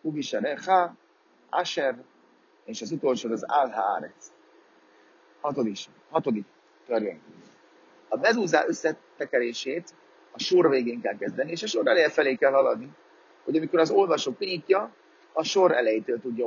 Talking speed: 120 wpm